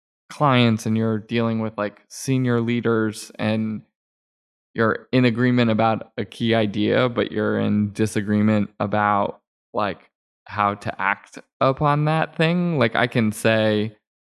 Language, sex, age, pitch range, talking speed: English, male, 20-39, 105-115 Hz, 135 wpm